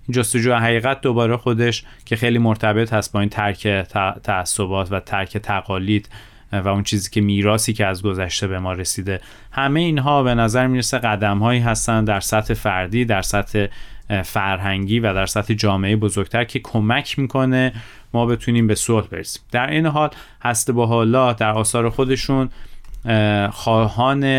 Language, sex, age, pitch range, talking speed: Persian, male, 30-49, 100-120 Hz, 155 wpm